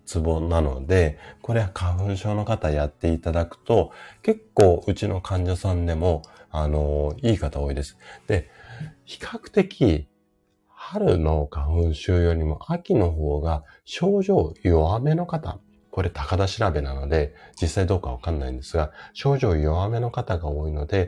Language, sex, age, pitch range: Japanese, male, 30-49, 75-100 Hz